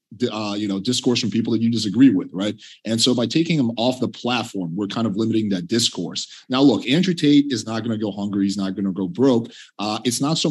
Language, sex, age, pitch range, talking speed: English, male, 30-49, 105-125 Hz, 245 wpm